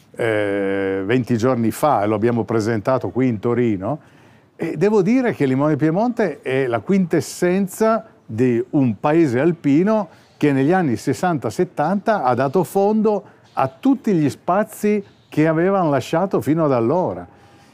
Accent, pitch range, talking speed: native, 120-175 Hz, 135 wpm